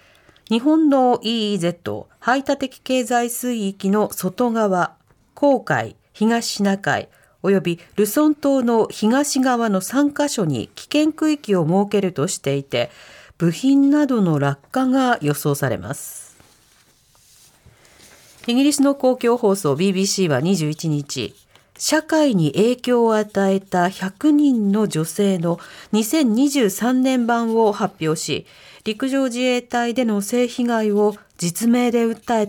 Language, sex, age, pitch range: Japanese, female, 40-59, 180-245 Hz